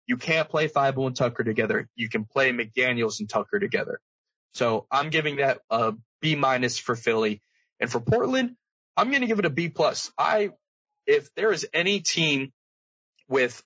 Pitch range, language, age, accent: 115-155 Hz, English, 20-39, American